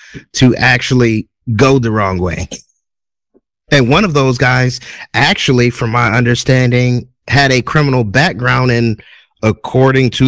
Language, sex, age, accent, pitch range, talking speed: English, male, 30-49, American, 110-130 Hz, 130 wpm